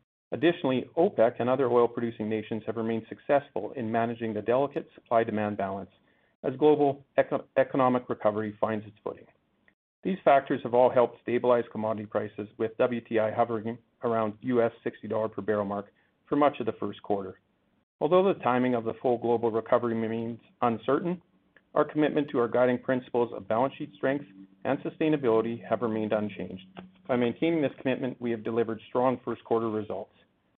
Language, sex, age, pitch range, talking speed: English, male, 40-59, 110-130 Hz, 160 wpm